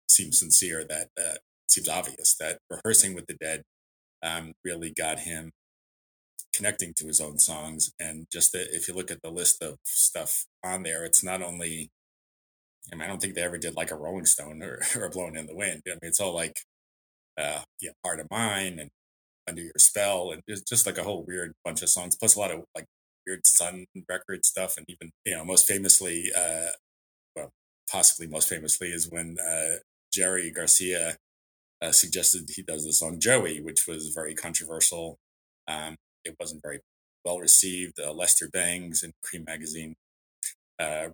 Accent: American